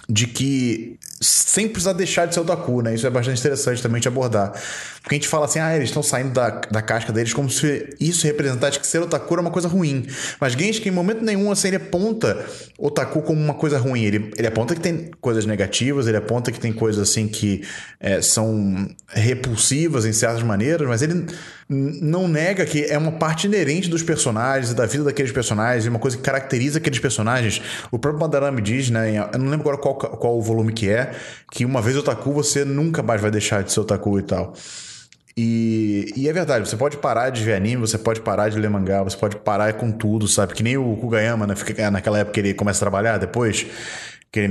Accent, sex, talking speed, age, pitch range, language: Brazilian, male, 220 wpm, 20-39, 110-145 Hz, Portuguese